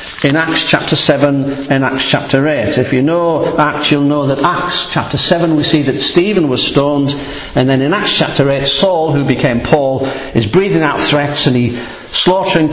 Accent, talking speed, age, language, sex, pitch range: British, 195 wpm, 50-69, English, male, 140-160 Hz